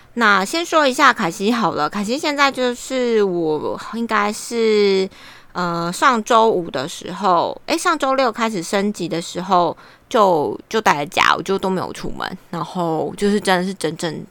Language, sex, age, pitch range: Chinese, female, 20-39, 170-220 Hz